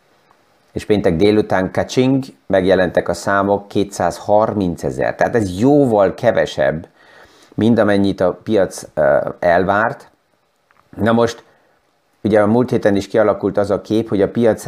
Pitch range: 90-115 Hz